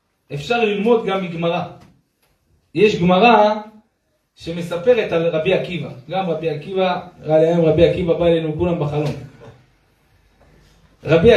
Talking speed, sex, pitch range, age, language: 115 wpm, male, 165-220 Hz, 40-59, Hebrew